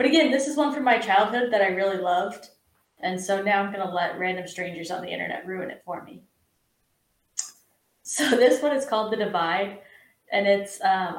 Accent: American